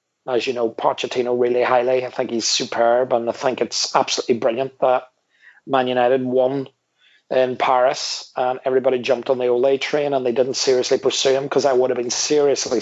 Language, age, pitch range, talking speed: English, 30-49, 130-150 Hz, 190 wpm